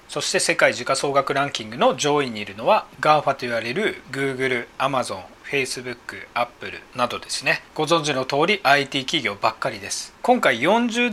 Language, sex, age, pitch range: Japanese, male, 40-59, 135-200 Hz